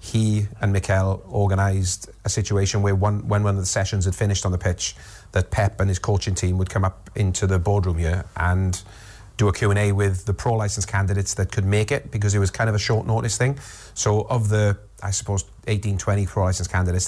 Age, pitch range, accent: 30-49, 95-105 Hz, British